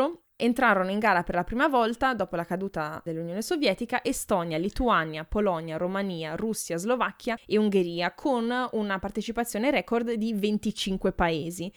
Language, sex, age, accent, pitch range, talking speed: Italian, female, 20-39, native, 180-245 Hz, 140 wpm